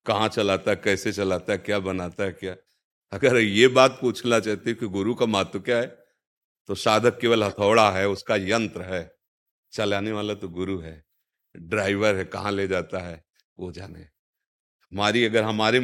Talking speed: 175 wpm